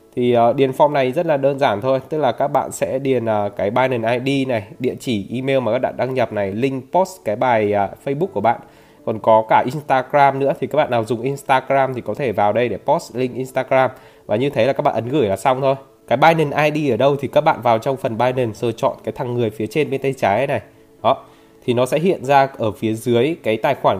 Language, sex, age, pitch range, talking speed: Vietnamese, male, 20-39, 110-145 Hz, 255 wpm